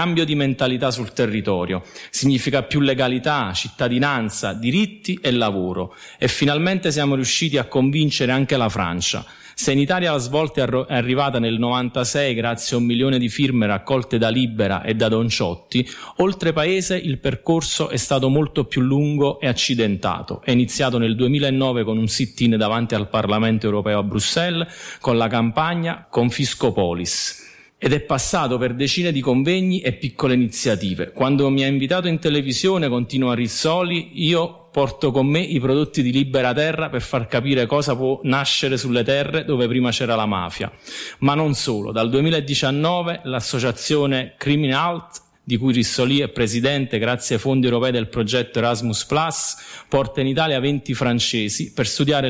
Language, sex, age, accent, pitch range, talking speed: Italian, male, 30-49, native, 115-145 Hz, 155 wpm